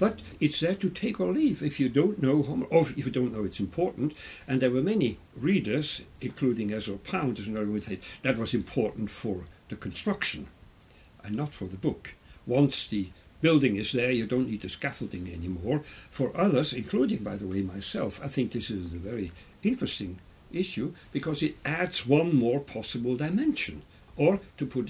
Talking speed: 175 wpm